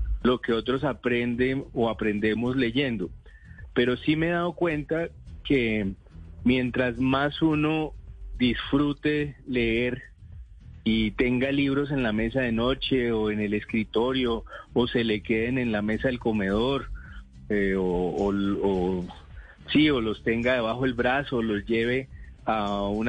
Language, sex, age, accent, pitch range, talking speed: Spanish, male, 40-59, Colombian, 105-135 Hz, 145 wpm